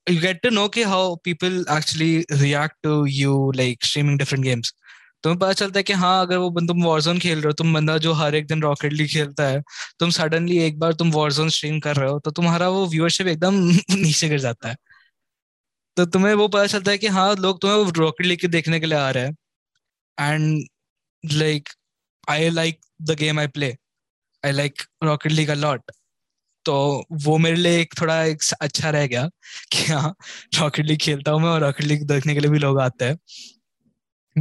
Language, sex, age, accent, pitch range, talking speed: Hindi, male, 20-39, native, 150-180 Hz, 200 wpm